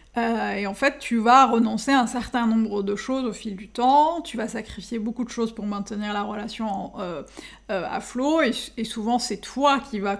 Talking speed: 230 wpm